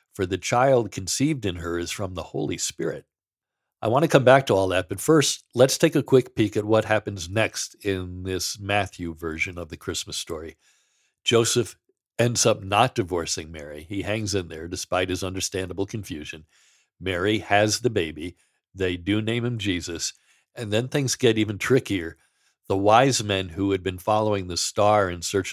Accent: American